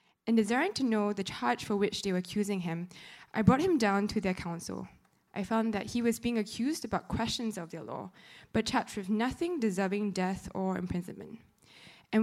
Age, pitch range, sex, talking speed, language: 20-39, 190-230 Hz, female, 195 wpm, English